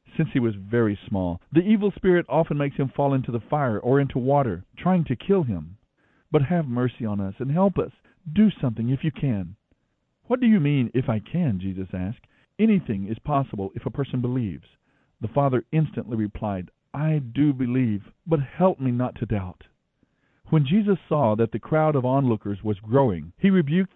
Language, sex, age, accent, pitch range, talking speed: English, male, 50-69, American, 110-160 Hz, 190 wpm